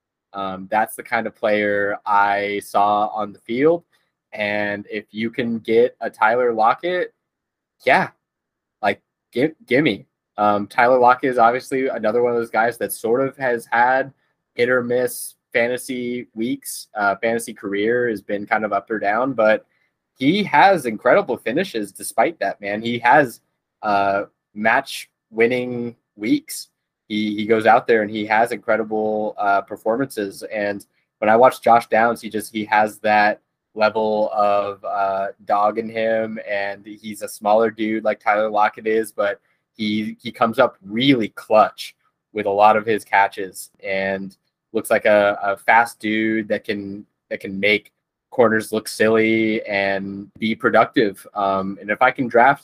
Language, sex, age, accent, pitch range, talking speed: English, male, 20-39, American, 105-115 Hz, 160 wpm